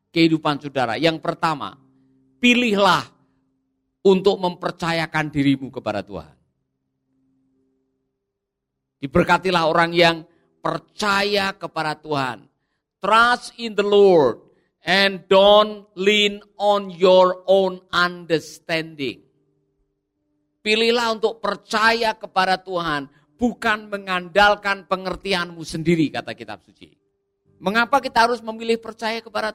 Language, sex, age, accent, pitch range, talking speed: Indonesian, male, 50-69, native, 135-205 Hz, 90 wpm